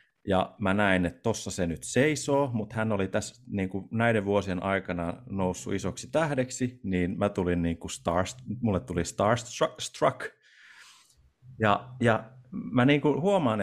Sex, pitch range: male, 90-115 Hz